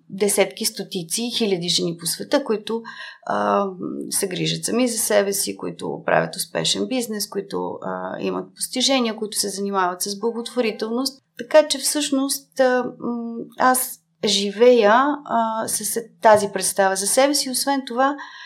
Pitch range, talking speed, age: 195-245 Hz, 135 wpm, 30-49